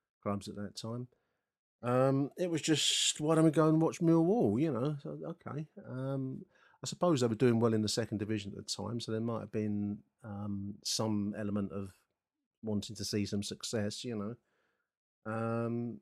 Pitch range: 105-120 Hz